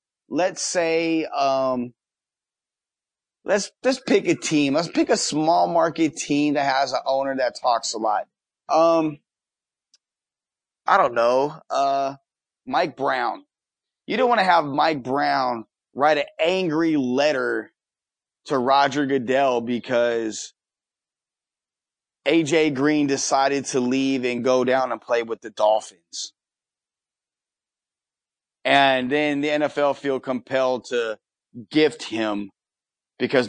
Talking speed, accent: 120 wpm, American